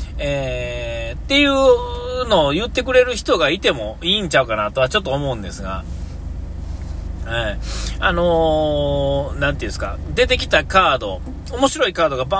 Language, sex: Japanese, male